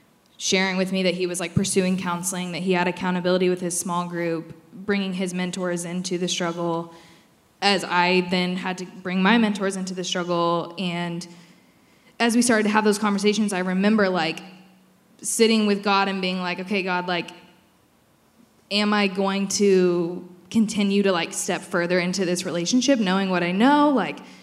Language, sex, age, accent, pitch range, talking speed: English, female, 10-29, American, 180-210 Hz, 175 wpm